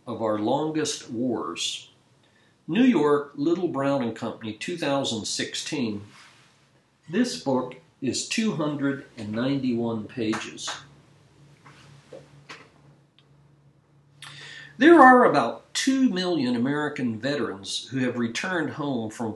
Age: 50-69